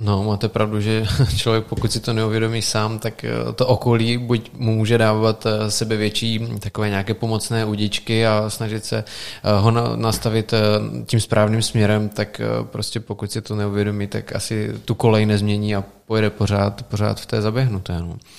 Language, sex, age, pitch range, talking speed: Czech, male, 20-39, 105-115 Hz, 155 wpm